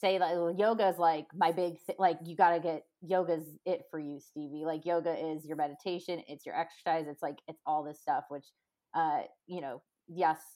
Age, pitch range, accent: 20-39, 165-200 Hz, American